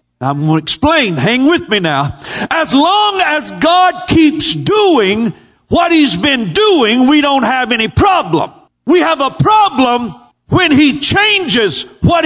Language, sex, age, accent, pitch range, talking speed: English, male, 50-69, American, 225-345 Hz, 150 wpm